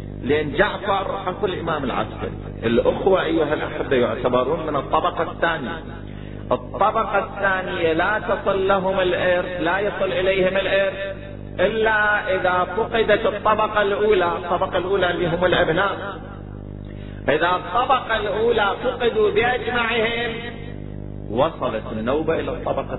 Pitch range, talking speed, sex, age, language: 120-190 Hz, 105 wpm, male, 30-49, Arabic